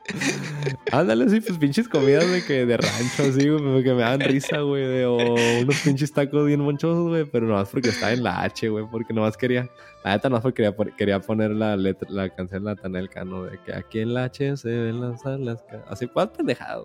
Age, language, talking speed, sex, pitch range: 20-39, English, 235 wpm, male, 105-135 Hz